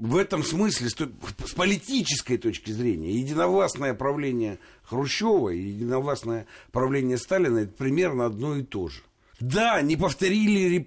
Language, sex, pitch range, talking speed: Russian, male, 125-195 Hz, 125 wpm